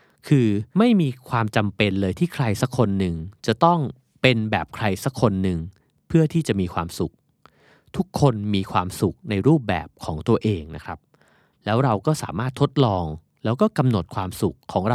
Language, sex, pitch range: Thai, male, 95-140 Hz